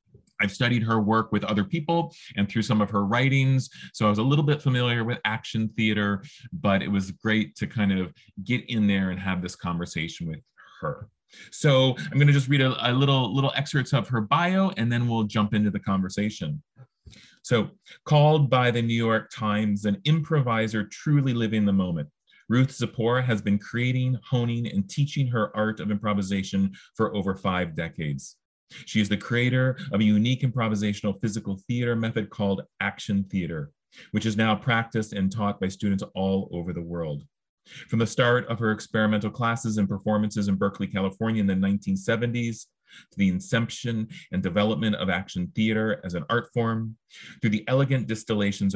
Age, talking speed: 30-49, 180 wpm